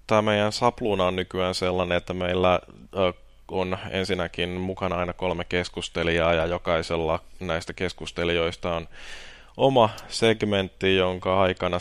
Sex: male